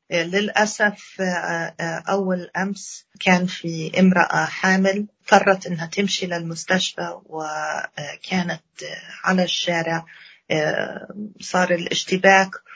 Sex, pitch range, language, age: female, 170-195 Hz, Arabic, 40-59